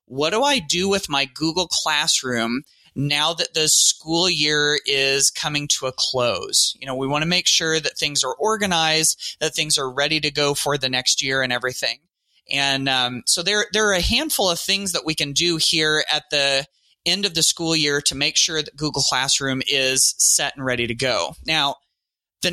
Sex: male